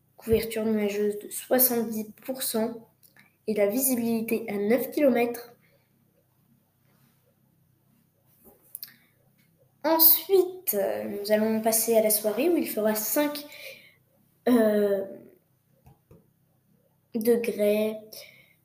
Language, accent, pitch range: French, French, 215-285 Hz